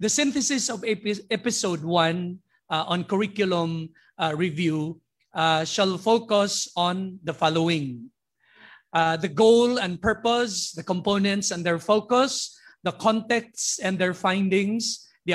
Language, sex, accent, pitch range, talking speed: Filipino, male, native, 175-220 Hz, 125 wpm